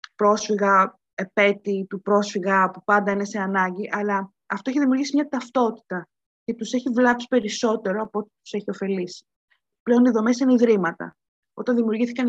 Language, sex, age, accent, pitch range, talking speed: Greek, female, 20-39, native, 205-245 Hz, 155 wpm